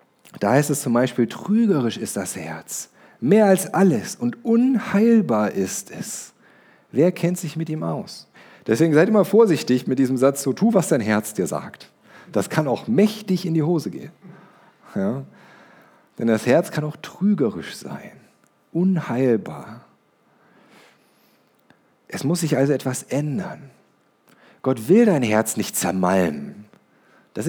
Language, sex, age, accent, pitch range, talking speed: German, male, 40-59, German, 110-180 Hz, 140 wpm